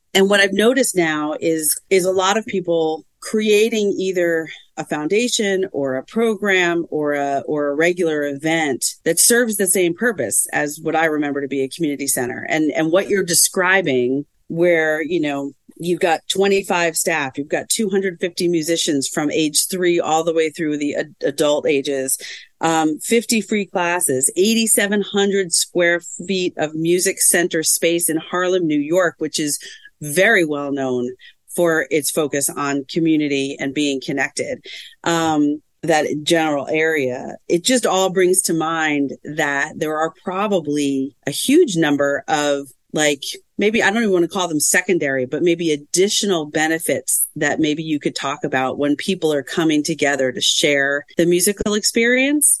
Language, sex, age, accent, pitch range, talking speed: English, female, 40-59, American, 150-190 Hz, 160 wpm